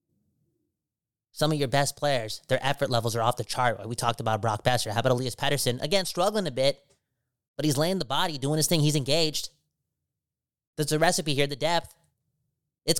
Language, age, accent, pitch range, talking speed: English, 30-49, American, 135-195 Hz, 195 wpm